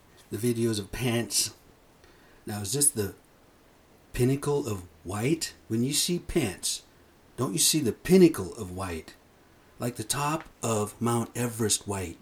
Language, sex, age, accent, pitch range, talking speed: English, male, 50-69, American, 105-125 Hz, 140 wpm